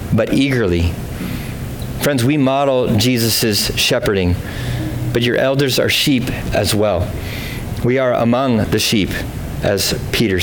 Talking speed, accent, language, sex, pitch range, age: 120 wpm, American, English, male, 110-130 Hz, 30-49